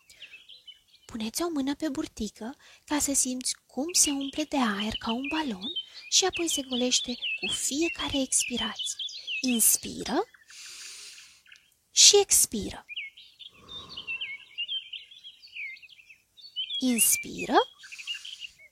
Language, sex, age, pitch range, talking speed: Romanian, female, 20-39, 235-330 Hz, 85 wpm